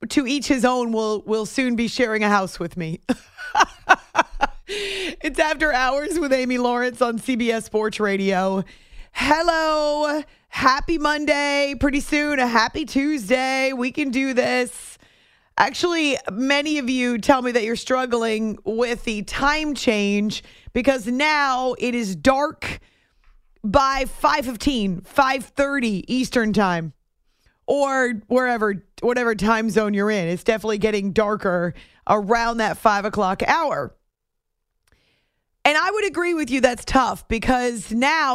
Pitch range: 215-275 Hz